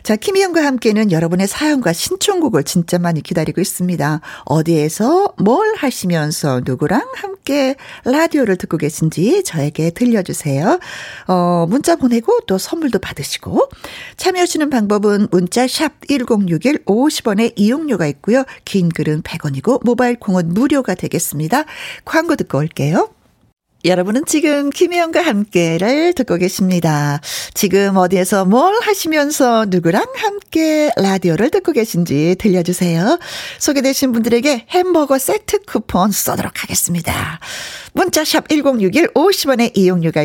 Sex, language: female, Korean